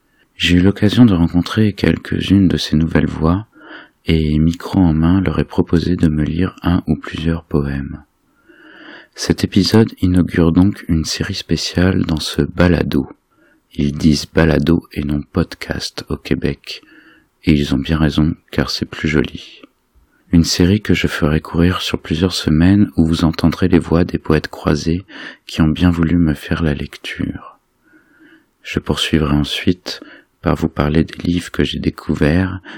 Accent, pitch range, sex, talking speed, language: French, 80-95 Hz, male, 160 wpm, French